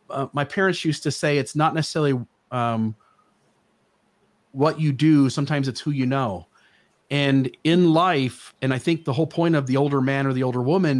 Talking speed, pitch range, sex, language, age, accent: 190 wpm, 125-155 Hz, male, English, 40-59, American